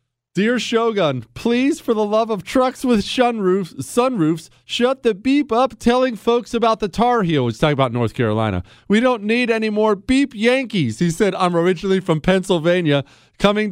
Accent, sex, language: American, male, English